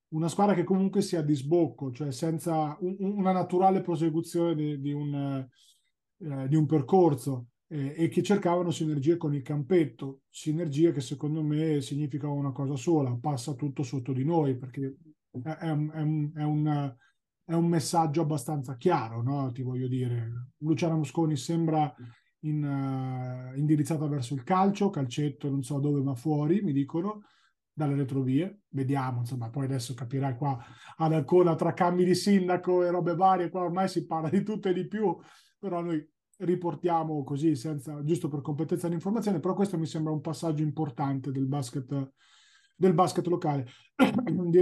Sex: male